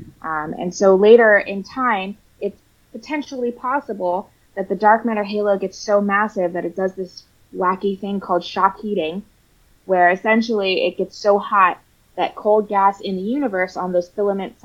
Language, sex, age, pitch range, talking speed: English, female, 20-39, 165-200 Hz, 170 wpm